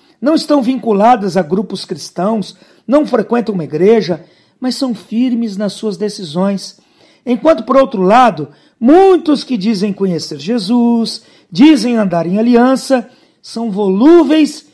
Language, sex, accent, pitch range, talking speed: English, male, Brazilian, 190-270 Hz, 125 wpm